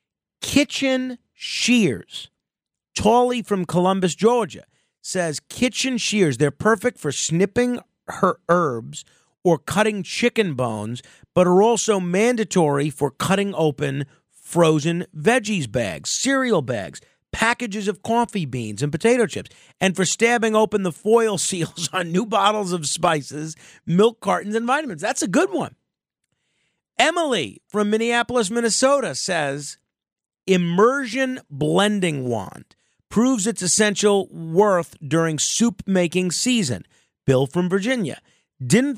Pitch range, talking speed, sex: 165-230 Hz, 120 wpm, male